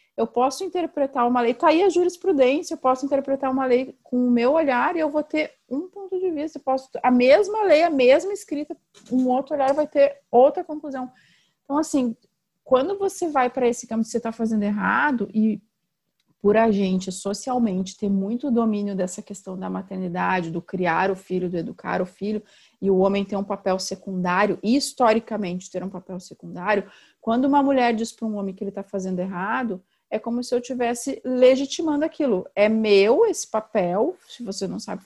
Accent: Brazilian